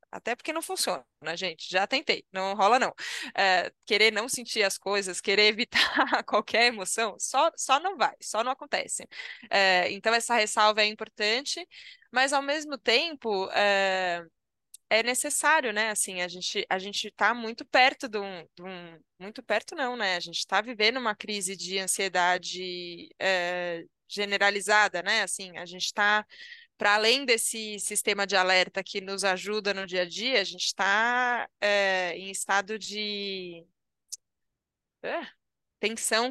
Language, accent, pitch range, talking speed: Portuguese, Brazilian, 190-230 Hz, 155 wpm